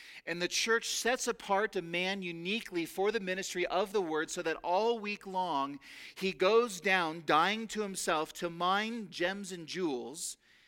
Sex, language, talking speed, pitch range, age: male, English, 170 wpm, 160-205 Hz, 40-59